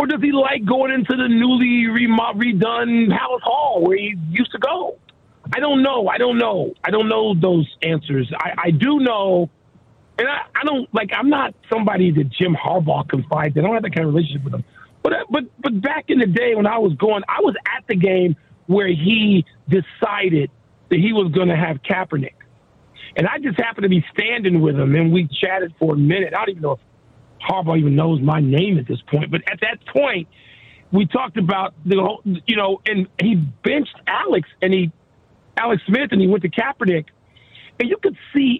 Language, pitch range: English, 160-230 Hz